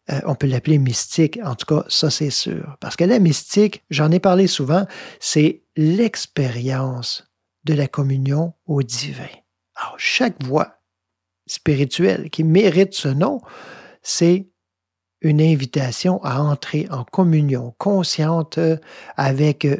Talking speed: 130 wpm